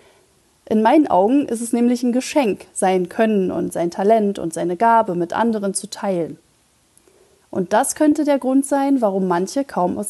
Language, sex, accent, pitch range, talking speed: German, female, German, 195-250 Hz, 180 wpm